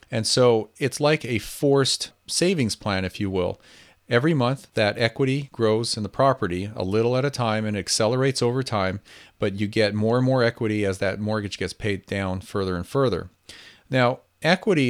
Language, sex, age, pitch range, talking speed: English, male, 40-59, 100-120 Hz, 185 wpm